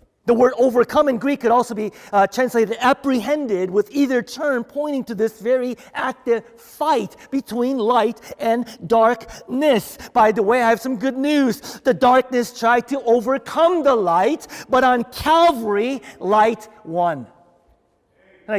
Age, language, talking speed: 40-59, English, 145 wpm